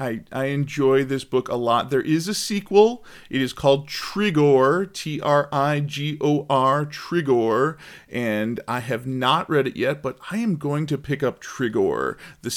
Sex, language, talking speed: male, English, 180 wpm